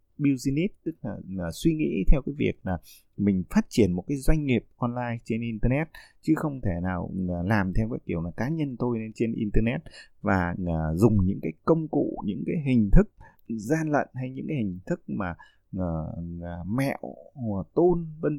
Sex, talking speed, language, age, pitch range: male, 180 wpm, Vietnamese, 20-39, 95-135 Hz